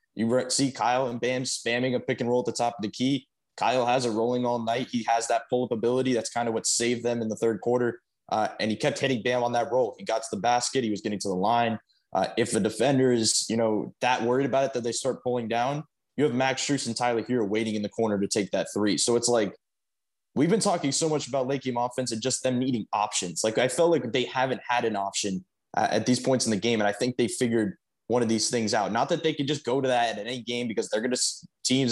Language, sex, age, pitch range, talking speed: English, male, 20-39, 110-130 Hz, 275 wpm